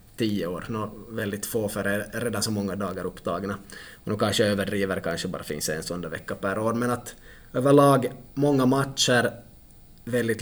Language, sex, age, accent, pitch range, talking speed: Swedish, male, 20-39, Finnish, 100-120 Hz, 185 wpm